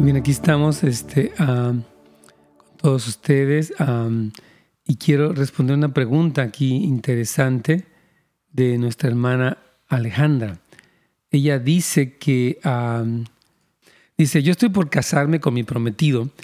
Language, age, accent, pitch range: Spanish, 40-59, Mexican, 125-155 Hz